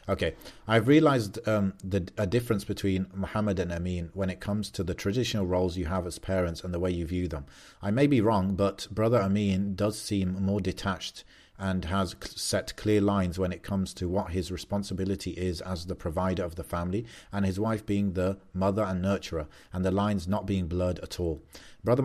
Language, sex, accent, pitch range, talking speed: English, male, British, 90-105 Hz, 200 wpm